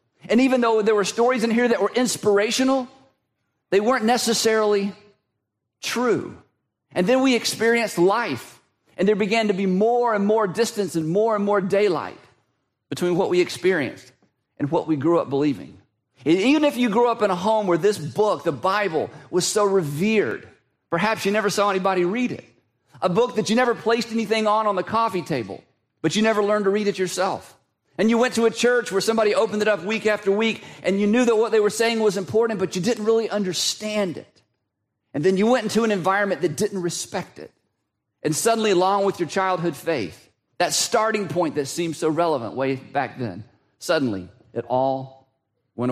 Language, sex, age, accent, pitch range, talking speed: English, male, 40-59, American, 145-220 Hz, 195 wpm